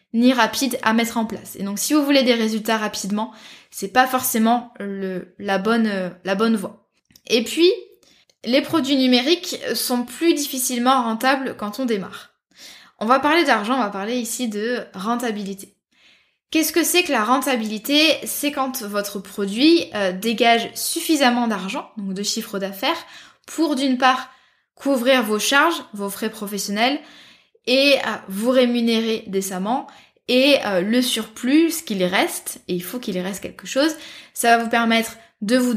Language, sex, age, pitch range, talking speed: French, female, 20-39, 210-270 Hz, 160 wpm